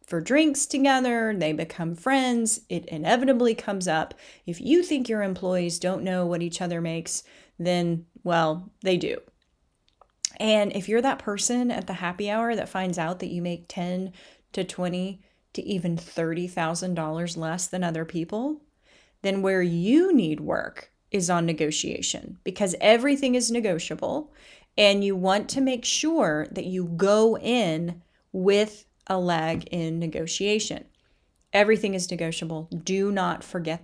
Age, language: 30-49, English